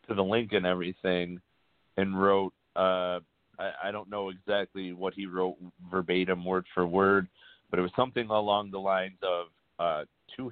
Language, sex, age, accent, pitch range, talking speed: English, male, 40-59, American, 90-100 Hz, 170 wpm